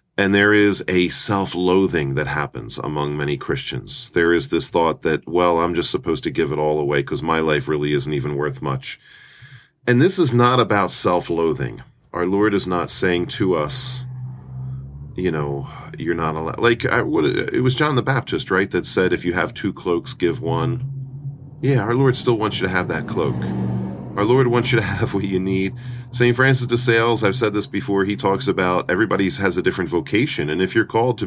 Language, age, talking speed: English, 40-59, 205 wpm